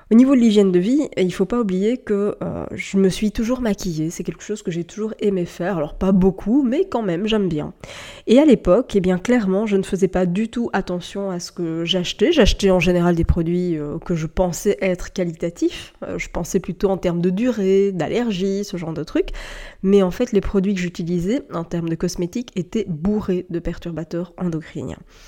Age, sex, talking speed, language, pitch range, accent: 20-39, female, 215 wpm, French, 180-210 Hz, French